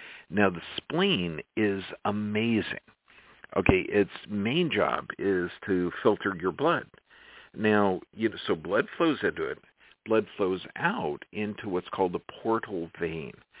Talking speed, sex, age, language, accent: 130 wpm, male, 50-69, English, American